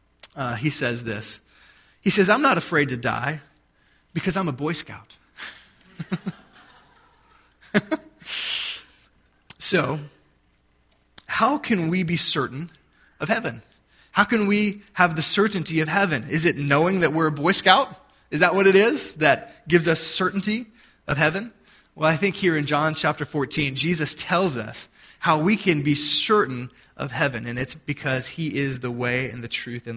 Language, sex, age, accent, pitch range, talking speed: English, male, 20-39, American, 130-180 Hz, 160 wpm